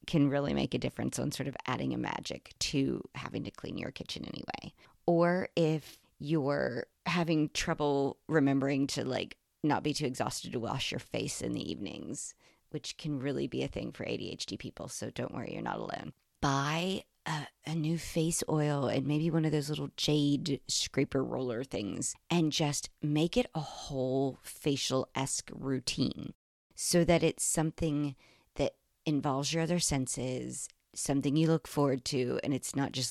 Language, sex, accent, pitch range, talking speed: English, female, American, 135-160 Hz, 170 wpm